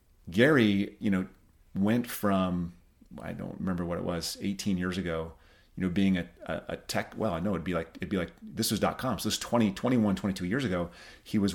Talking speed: 220 wpm